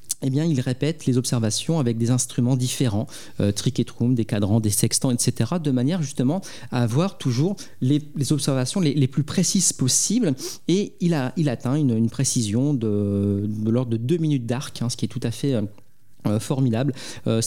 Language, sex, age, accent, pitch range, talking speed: French, male, 40-59, French, 120-155 Hz, 200 wpm